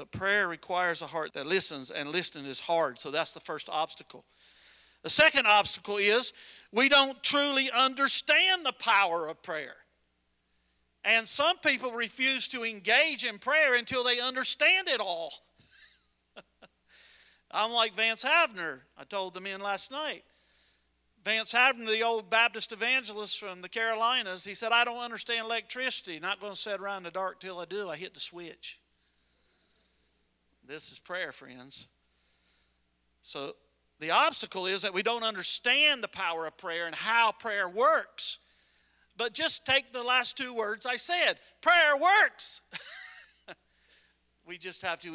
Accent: American